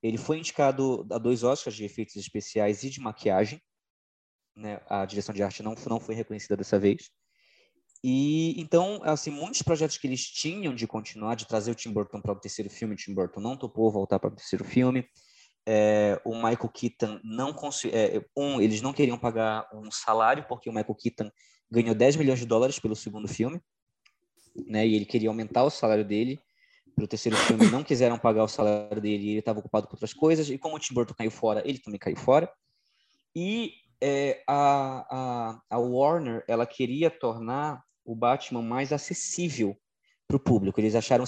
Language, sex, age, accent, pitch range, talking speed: Portuguese, male, 20-39, Brazilian, 110-140 Hz, 190 wpm